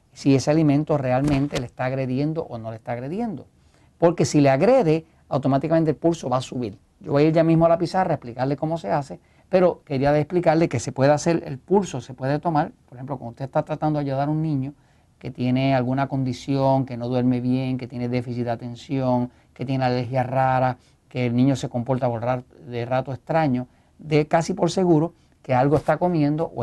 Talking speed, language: 210 wpm, Spanish